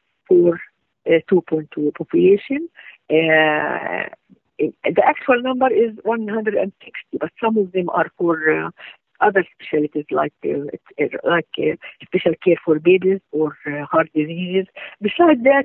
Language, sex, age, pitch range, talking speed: English, female, 50-69, 165-235 Hz, 125 wpm